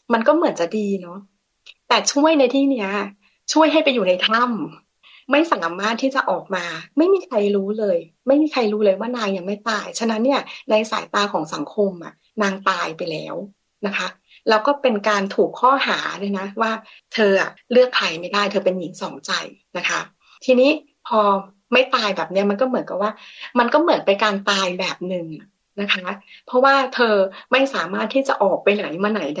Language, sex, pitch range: Thai, female, 195-255 Hz